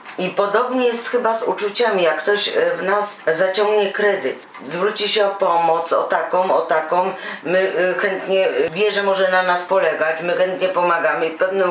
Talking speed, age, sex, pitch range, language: 170 wpm, 40-59, female, 185-225 Hz, Polish